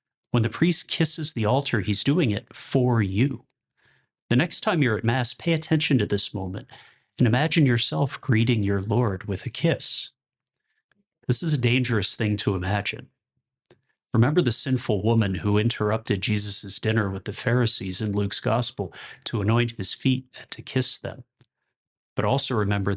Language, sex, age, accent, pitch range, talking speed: English, male, 30-49, American, 100-130 Hz, 165 wpm